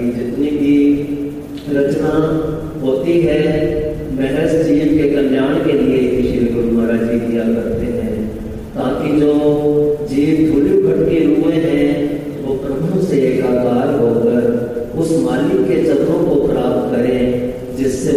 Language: Hindi